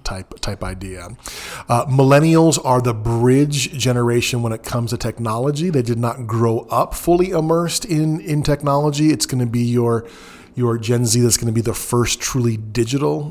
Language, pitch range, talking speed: English, 115-145 Hz, 180 wpm